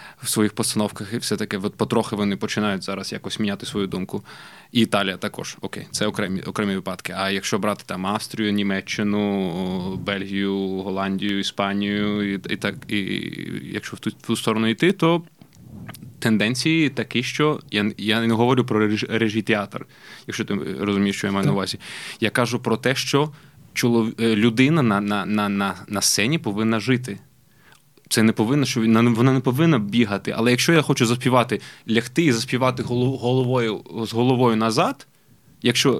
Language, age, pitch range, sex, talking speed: Ukrainian, 20-39, 105-125 Hz, male, 165 wpm